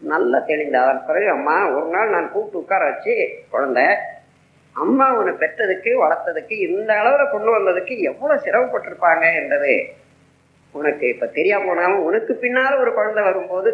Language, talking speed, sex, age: Tamil, 110 wpm, female, 20-39